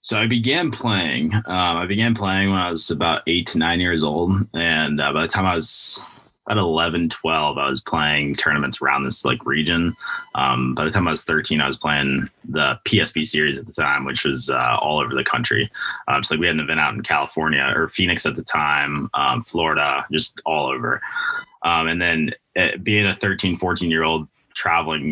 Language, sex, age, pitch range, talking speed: English, male, 20-39, 75-100 Hz, 215 wpm